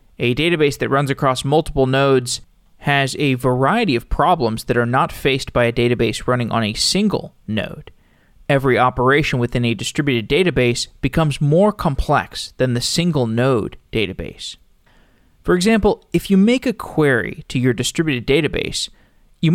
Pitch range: 120-160 Hz